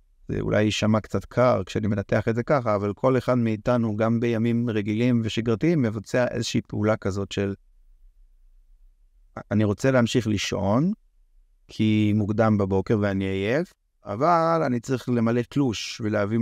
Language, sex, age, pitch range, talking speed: Hebrew, male, 30-49, 105-125 Hz, 140 wpm